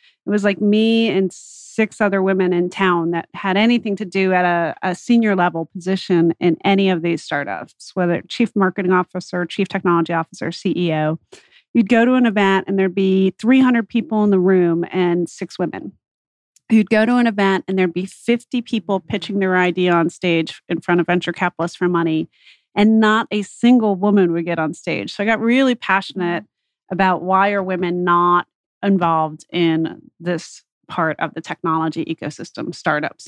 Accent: American